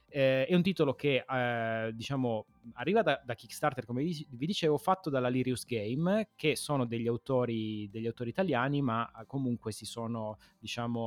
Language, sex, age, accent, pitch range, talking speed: Italian, male, 30-49, native, 110-140 Hz, 170 wpm